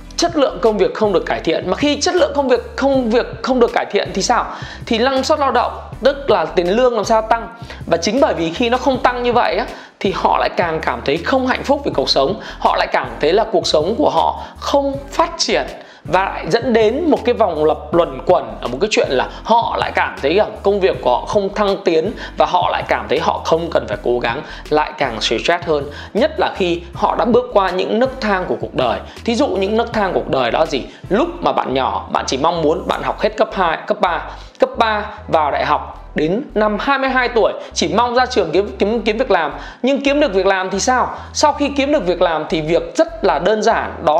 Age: 20-39